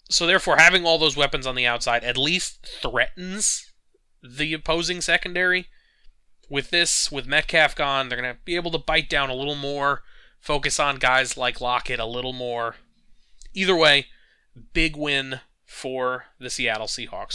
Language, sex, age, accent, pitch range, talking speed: English, male, 30-49, American, 125-170 Hz, 165 wpm